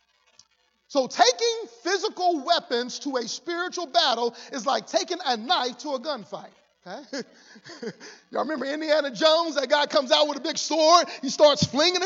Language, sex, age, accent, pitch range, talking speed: English, male, 40-59, American, 250-340 Hz, 155 wpm